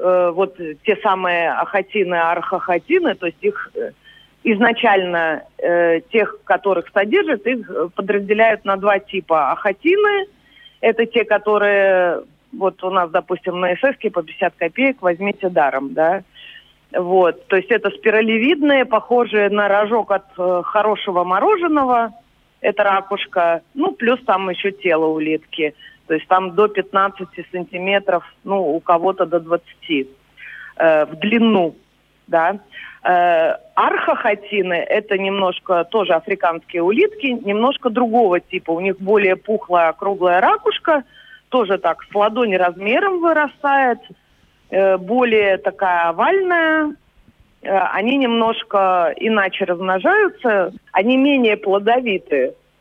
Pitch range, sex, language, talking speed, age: 180-240 Hz, female, Russian, 115 wpm, 30-49